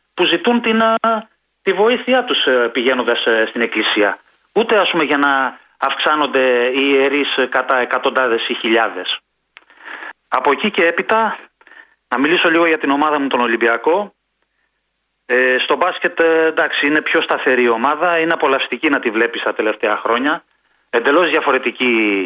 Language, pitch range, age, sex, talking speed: Greek, 130-215 Hz, 30-49, male, 135 wpm